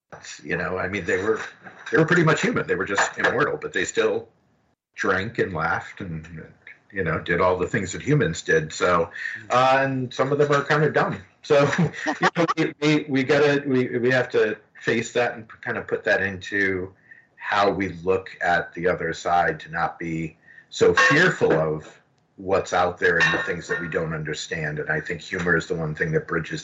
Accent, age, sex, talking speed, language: American, 50-69, male, 205 wpm, English